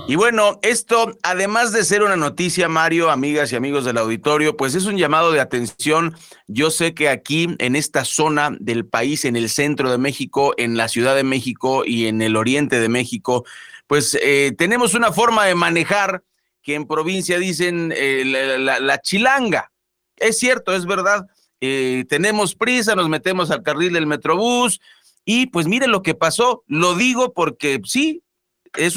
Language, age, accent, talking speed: Spanish, 40-59, Mexican, 175 wpm